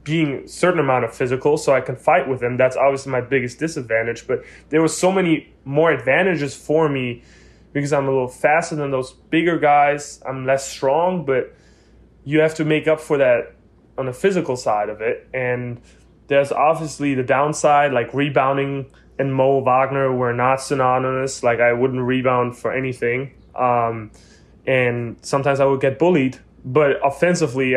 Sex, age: male, 20-39